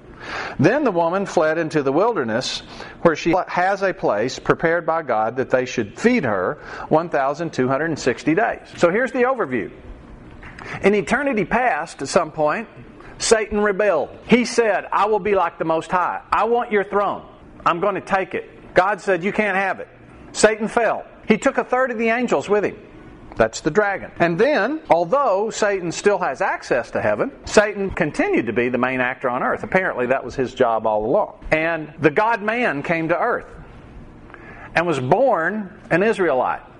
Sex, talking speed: male, 175 wpm